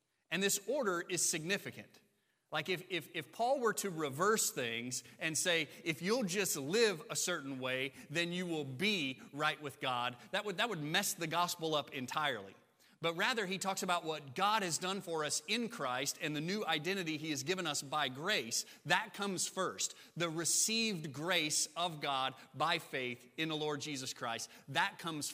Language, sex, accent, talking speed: English, male, American, 185 wpm